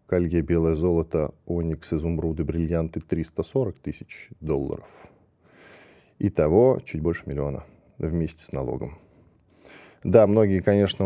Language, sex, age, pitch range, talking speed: Russian, male, 10-29, 85-110 Hz, 105 wpm